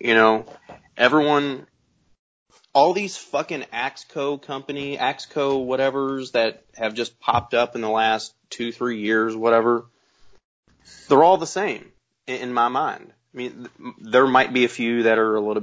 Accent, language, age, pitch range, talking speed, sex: American, English, 30-49, 100-120 Hz, 155 wpm, male